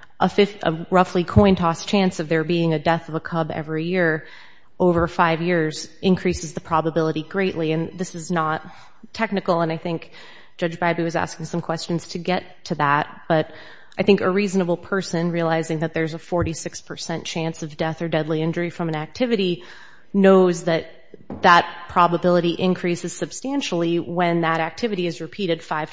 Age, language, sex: 30-49, English, female